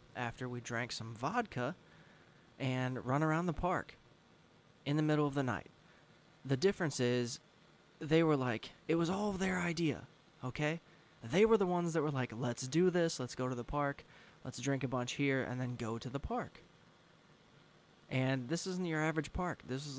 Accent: American